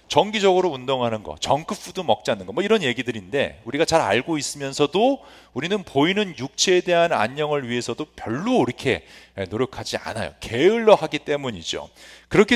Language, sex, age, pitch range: English, male, 40-59, 110-175 Hz